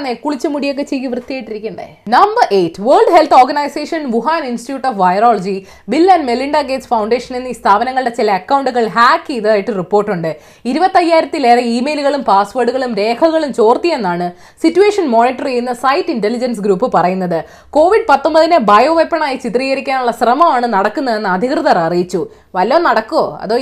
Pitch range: 220-310 Hz